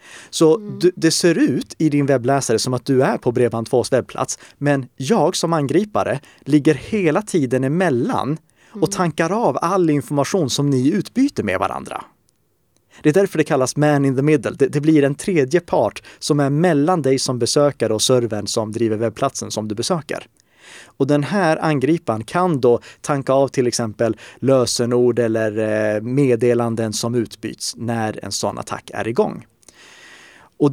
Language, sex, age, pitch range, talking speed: Swedish, male, 30-49, 115-150 Hz, 165 wpm